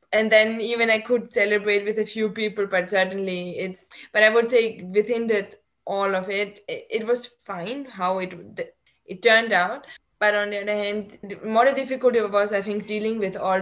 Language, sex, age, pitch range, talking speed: English, female, 20-39, 175-205 Hz, 200 wpm